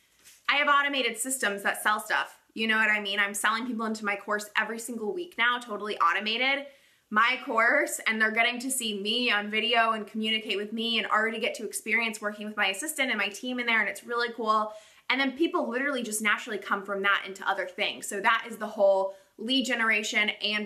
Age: 20-39